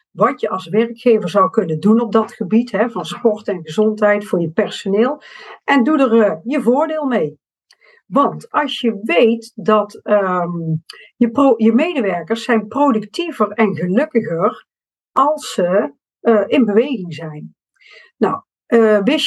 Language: Dutch